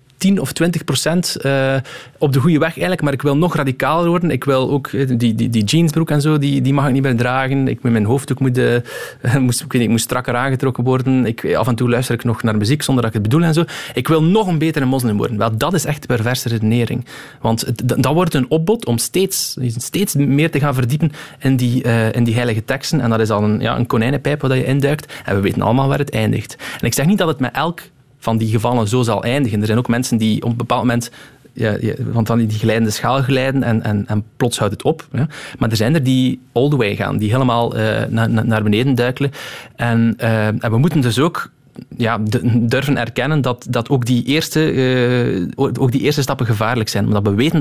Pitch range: 110-135 Hz